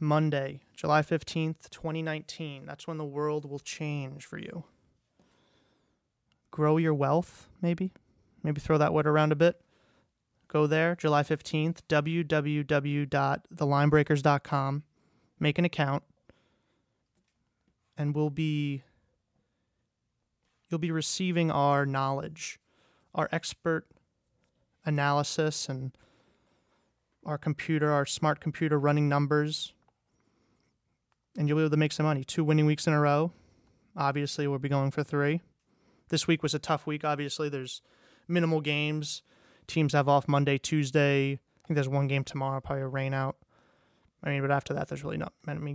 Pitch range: 140-155 Hz